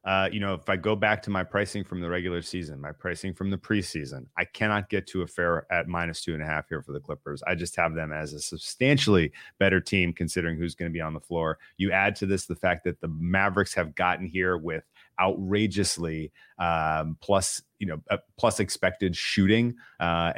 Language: English